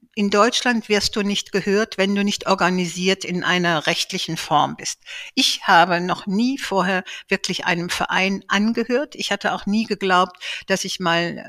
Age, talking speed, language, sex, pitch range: 60-79, 165 wpm, German, female, 180-220 Hz